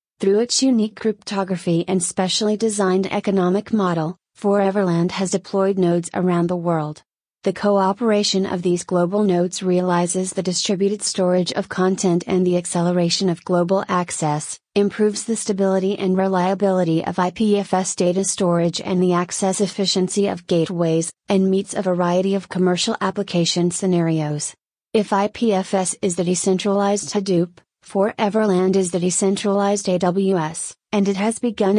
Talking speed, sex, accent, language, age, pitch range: 135 wpm, female, American, English, 30-49, 180-200 Hz